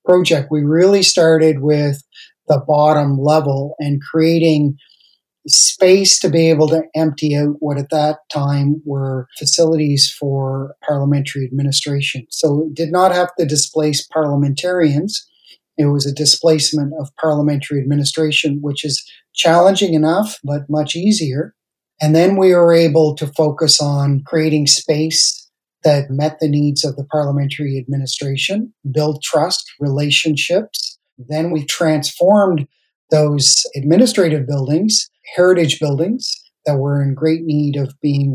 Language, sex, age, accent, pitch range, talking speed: English, male, 40-59, American, 140-160 Hz, 130 wpm